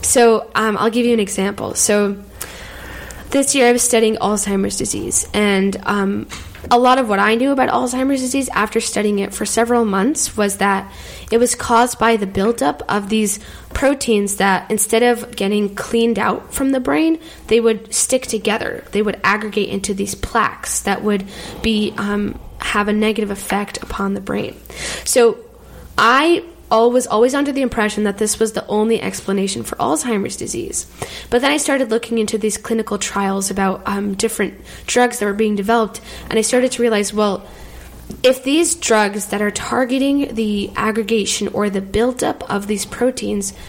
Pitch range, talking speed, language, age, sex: 205-245 Hz, 175 wpm, English, 10-29, female